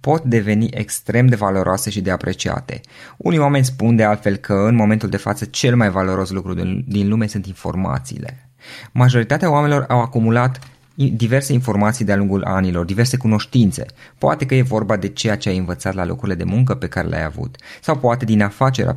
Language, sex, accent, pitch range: Romanian, male, native, 105-130 Hz